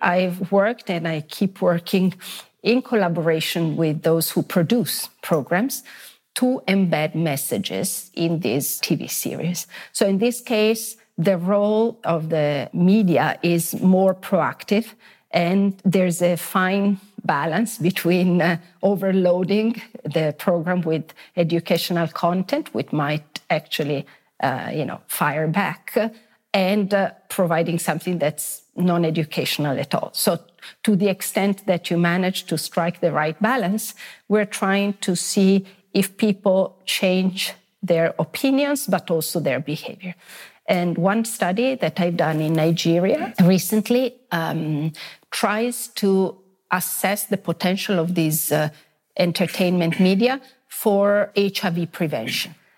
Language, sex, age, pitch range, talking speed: English, female, 40-59, 170-205 Hz, 120 wpm